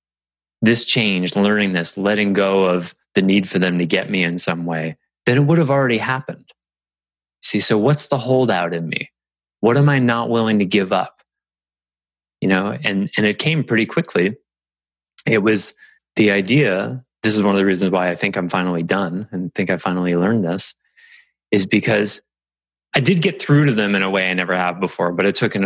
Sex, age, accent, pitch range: male, 20-39, American, 85-105 Hz